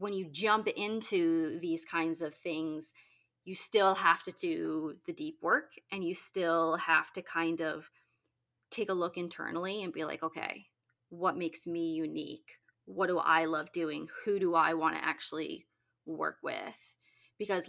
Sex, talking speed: female, 165 wpm